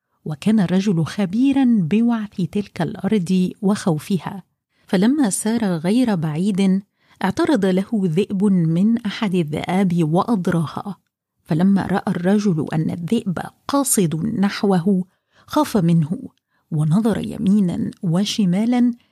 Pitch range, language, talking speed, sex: 180-225 Hz, Arabic, 95 wpm, female